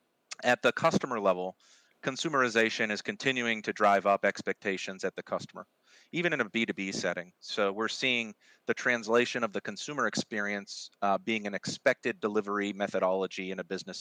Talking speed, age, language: 160 wpm, 30-49, English